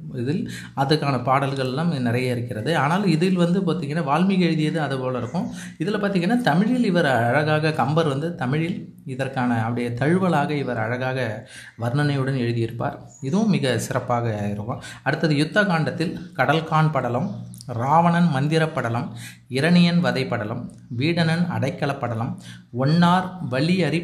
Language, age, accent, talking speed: Tamil, 30-49, native, 115 wpm